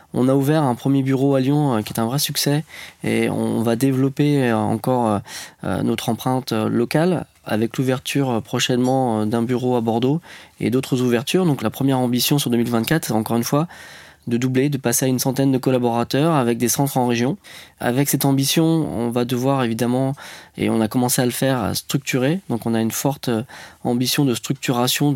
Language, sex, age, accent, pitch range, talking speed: French, male, 20-39, French, 115-140 Hz, 185 wpm